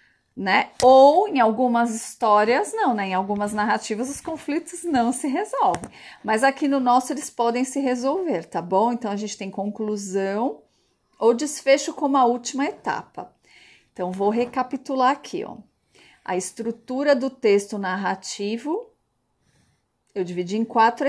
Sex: female